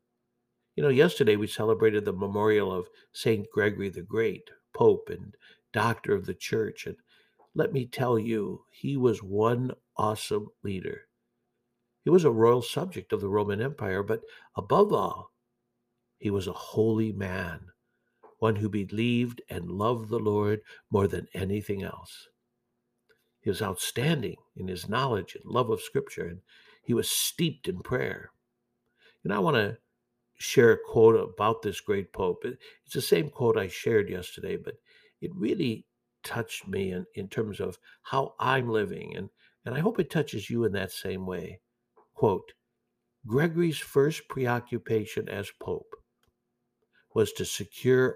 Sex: male